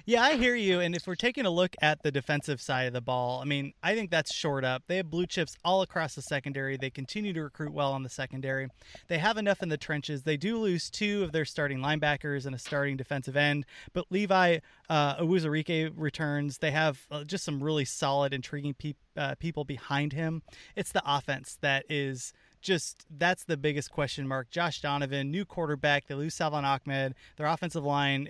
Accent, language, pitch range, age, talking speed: American, English, 140-175 Hz, 20-39, 210 wpm